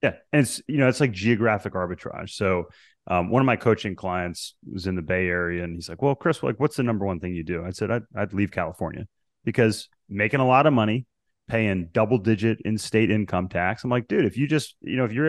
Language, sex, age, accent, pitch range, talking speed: English, male, 30-49, American, 95-125 Hz, 245 wpm